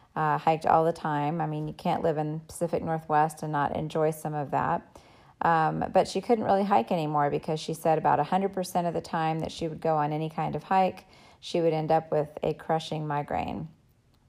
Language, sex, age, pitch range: English, female, 30-49, 150-165 Hz